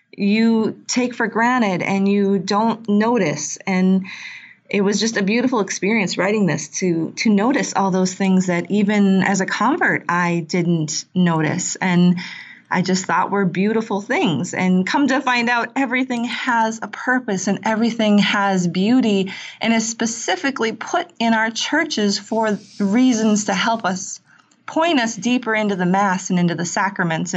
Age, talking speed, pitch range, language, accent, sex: 30-49, 160 wpm, 185-225 Hz, English, American, female